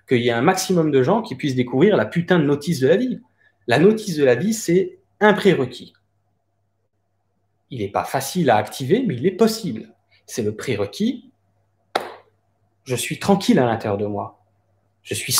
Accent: French